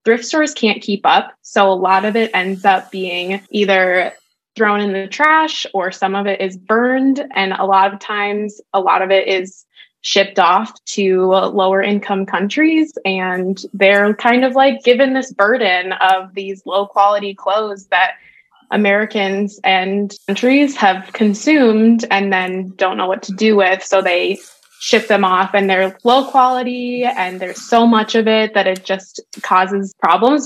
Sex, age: female, 20-39